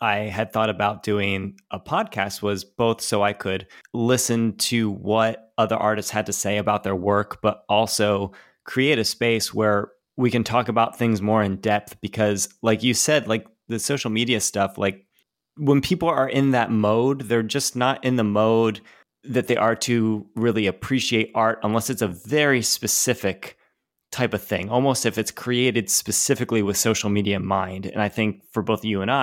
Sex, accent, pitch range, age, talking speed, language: male, American, 105-120 Hz, 20-39, 185 wpm, English